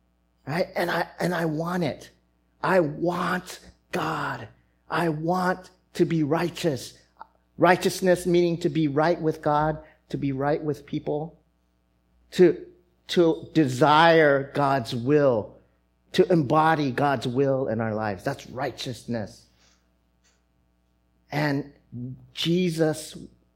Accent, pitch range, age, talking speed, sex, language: American, 105-175 Hz, 40-59, 105 wpm, male, English